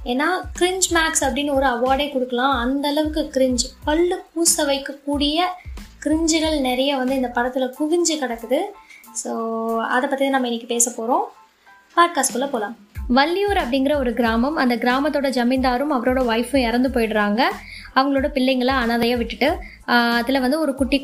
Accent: native